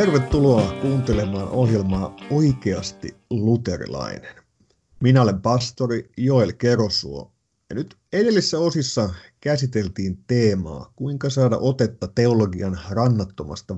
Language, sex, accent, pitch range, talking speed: Finnish, male, native, 95-125 Hz, 90 wpm